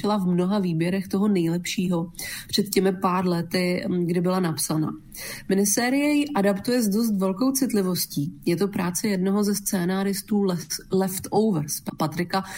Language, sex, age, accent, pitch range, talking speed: Czech, female, 30-49, native, 175-200 Hz, 125 wpm